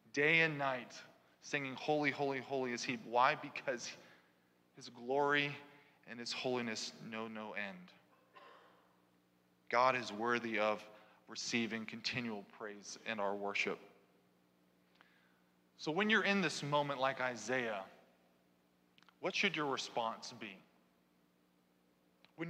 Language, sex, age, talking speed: English, male, 20-39, 115 wpm